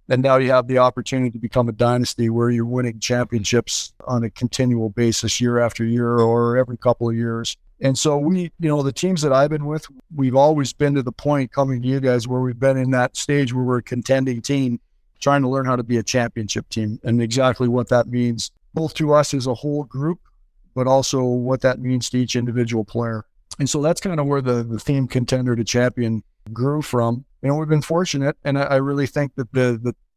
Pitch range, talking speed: 120-135 Hz, 225 wpm